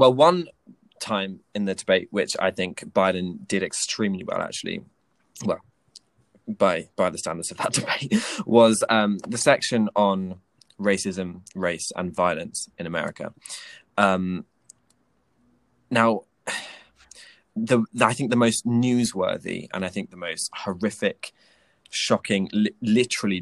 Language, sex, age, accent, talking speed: English, male, 20-39, British, 130 wpm